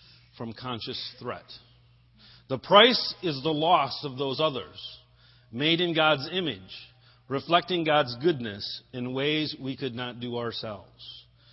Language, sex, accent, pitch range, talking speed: English, male, American, 115-140 Hz, 130 wpm